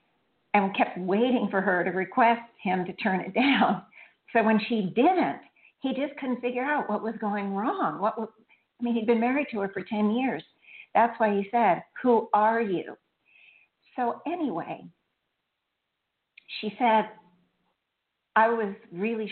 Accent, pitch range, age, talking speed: American, 180-230 Hz, 50-69, 160 wpm